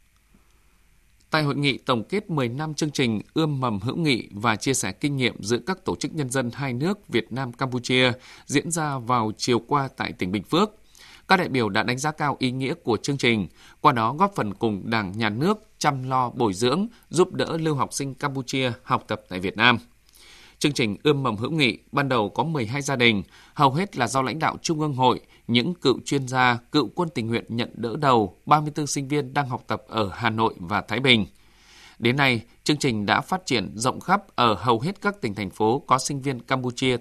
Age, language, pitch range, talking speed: 20-39, English, 110-145 Hz, 220 wpm